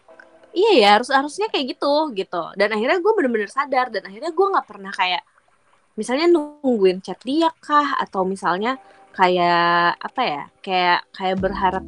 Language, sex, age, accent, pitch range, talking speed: Indonesian, female, 20-39, native, 170-225 Hz, 155 wpm